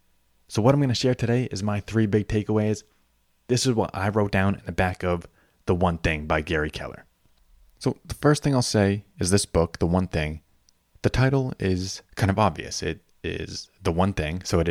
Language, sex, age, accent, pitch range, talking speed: English, male, 20-39, American, 85-105 Hz, 215 wpm